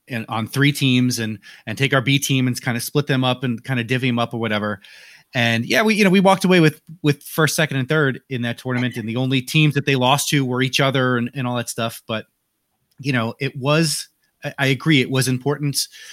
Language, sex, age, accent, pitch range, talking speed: English, male, 30-49, American, 115-145 Hz, 250 wpm